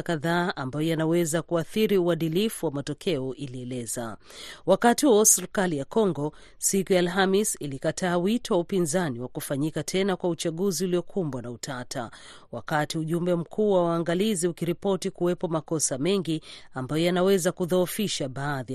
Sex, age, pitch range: female, 40-59, 145-185 Hz